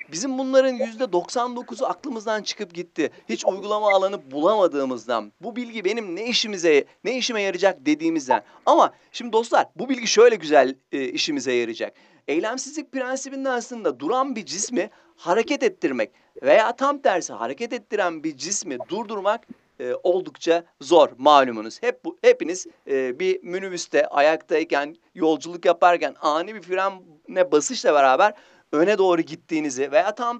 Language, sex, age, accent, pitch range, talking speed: Turkish, male, 40-59, native, 175-285 Hz, 140 wpm